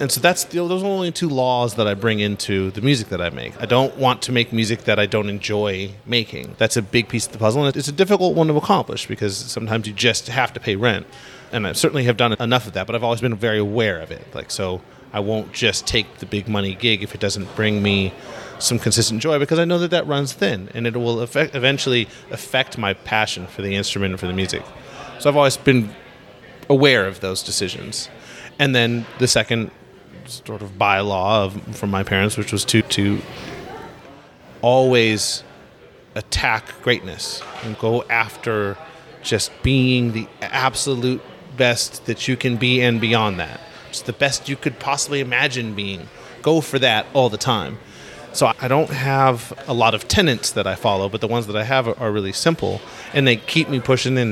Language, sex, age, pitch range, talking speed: English, male, 30-49, 105-130 Hz, 210 wpm